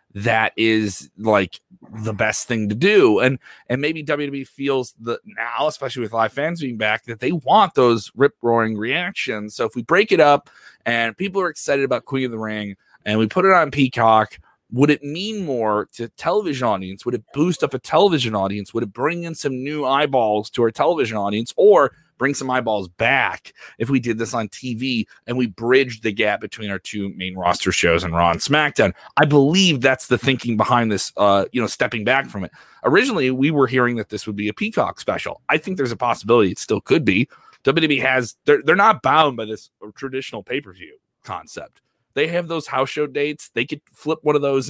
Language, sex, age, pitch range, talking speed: English, male, 30-49, 110-140 Hz, 210 wpm